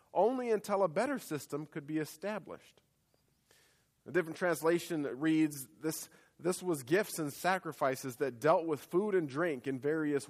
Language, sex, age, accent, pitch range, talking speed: English, male, 40-59, American, 145-200 Hz, 150 wpm